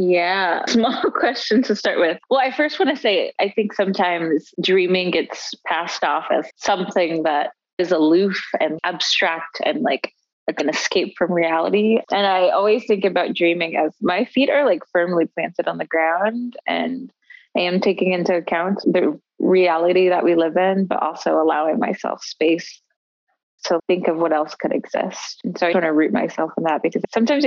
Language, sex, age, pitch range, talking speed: English, female, 20-39, 170-210 Hz, 185 wpm